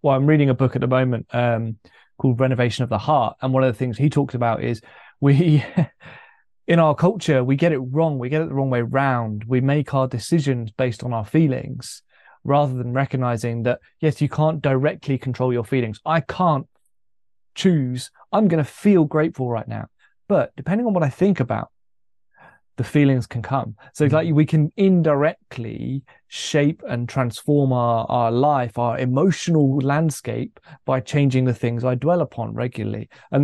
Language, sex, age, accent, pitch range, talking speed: English, male, 20-39, British, 120-150 Hz, 180 wpm